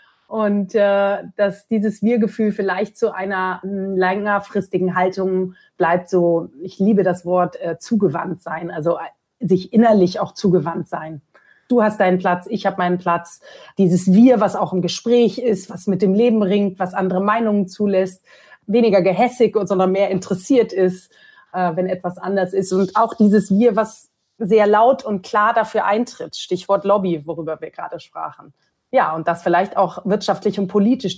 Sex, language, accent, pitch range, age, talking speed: female, German, German, 180-220 Hz, 30-49, 165 wpm